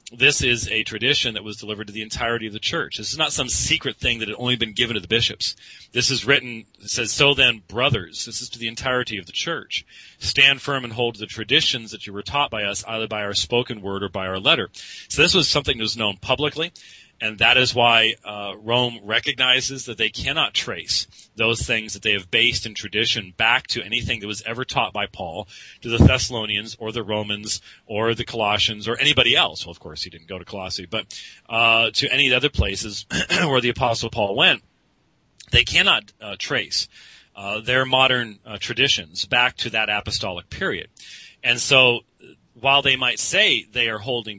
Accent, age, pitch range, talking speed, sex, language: American, 40-59, 105-125 Hz, 210 wpm, male, English